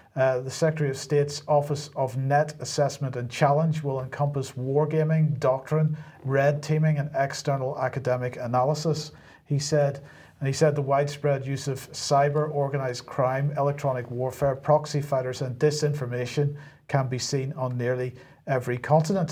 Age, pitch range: 40-59, 130-150 Hz